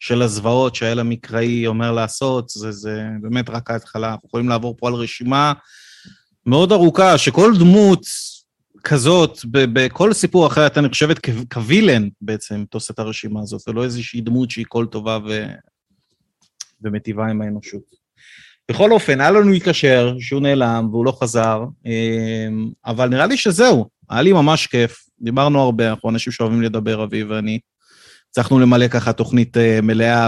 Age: 30-49